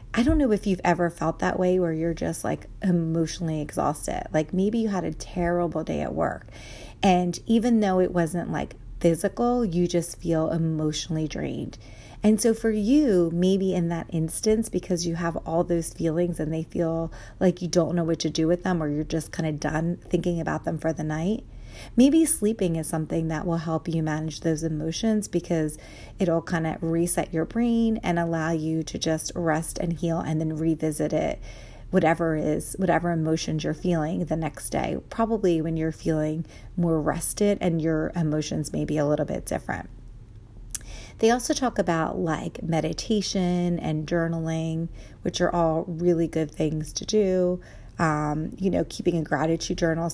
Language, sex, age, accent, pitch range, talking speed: English, female, 30-49, American, 155-180 Hz, 180 wpm